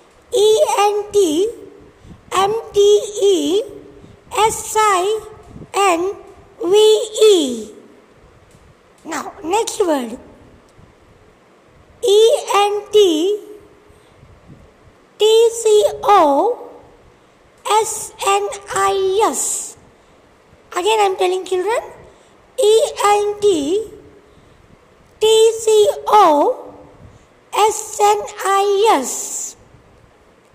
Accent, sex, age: American, female, 60-79